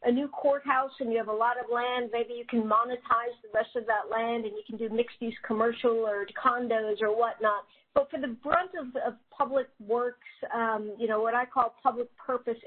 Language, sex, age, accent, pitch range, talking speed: English, female, 50-69, American, 220-255 Hz, 215 wpm